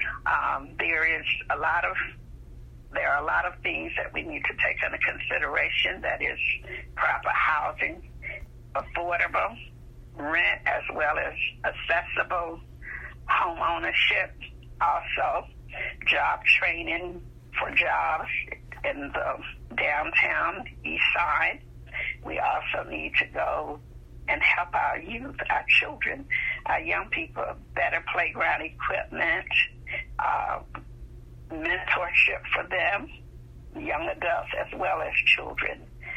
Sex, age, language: female, 60-79, English